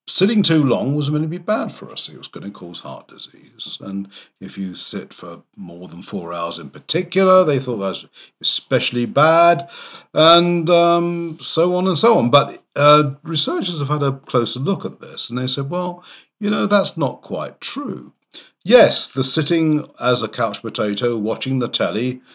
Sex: male